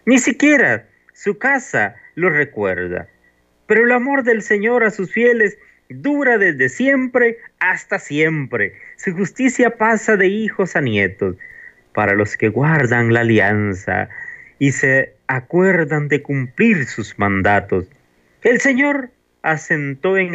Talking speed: 125 wpm